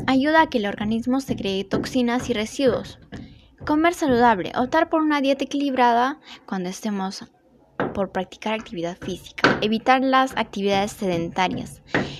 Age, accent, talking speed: 10-29, Mexican, 135 wpm